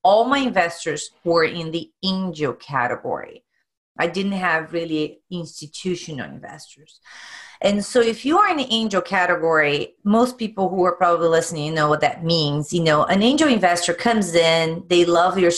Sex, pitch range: female, 165-215 Hz